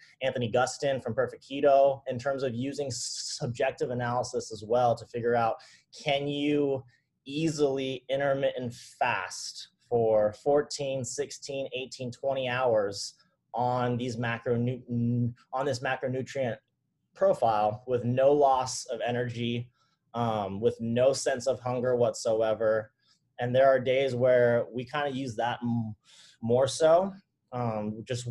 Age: 20-39